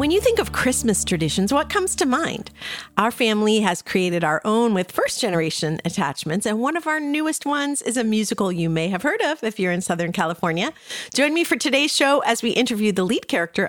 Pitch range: 185-270 Hz